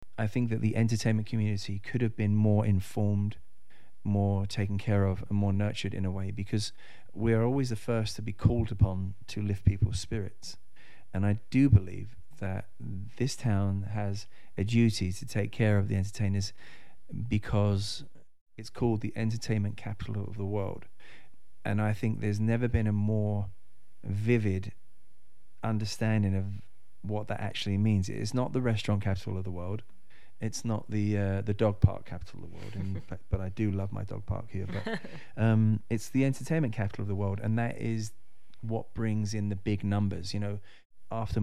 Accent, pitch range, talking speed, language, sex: British, 100-110 Hz, 180 wpm, English, male